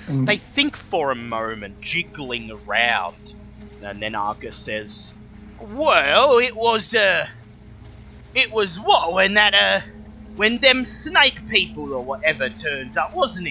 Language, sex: English, male